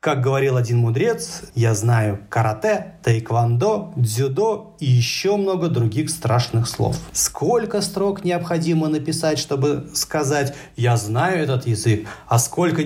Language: Russian